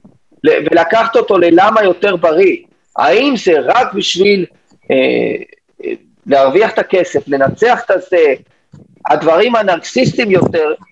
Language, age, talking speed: Hebrew, 40-59, 110 wpm